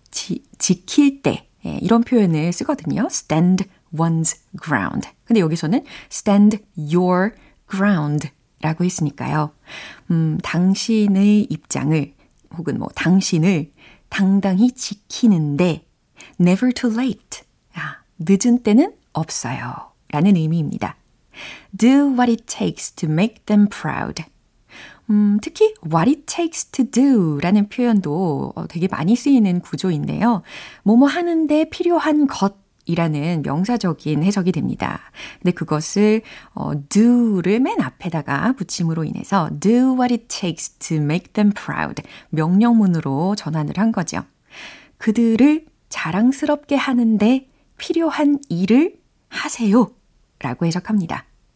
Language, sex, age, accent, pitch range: Korean, female, 30-49, native, 170-245 Hz